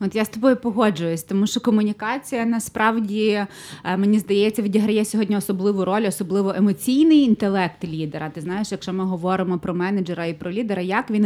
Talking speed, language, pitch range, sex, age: 165 wpm, Ukrainian, 190-230 Hz, female, 20-39